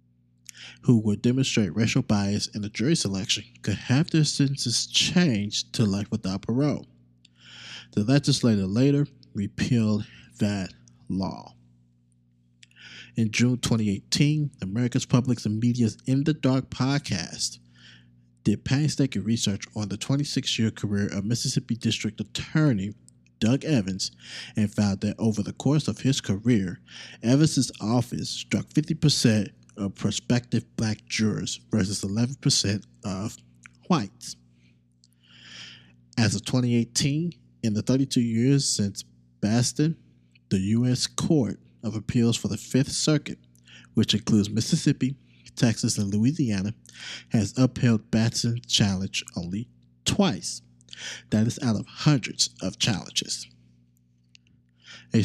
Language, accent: English, American